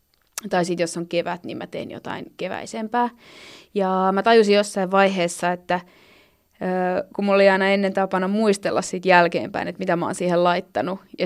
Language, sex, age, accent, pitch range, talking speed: Finnish, female, 20-39, native, 175-210 Hz, 170 wpm